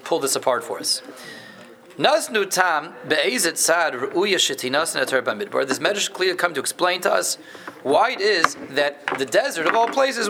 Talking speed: 130 wpm